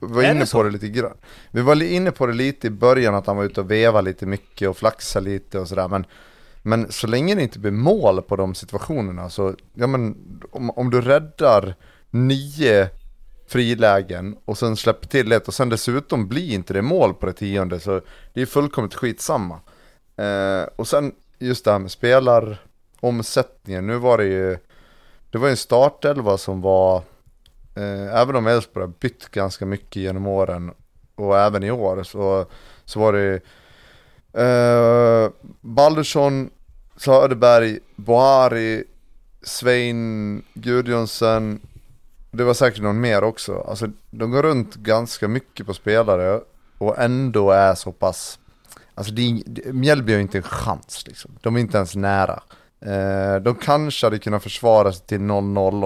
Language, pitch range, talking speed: Swedish, 100-125 Hz, 160 wpm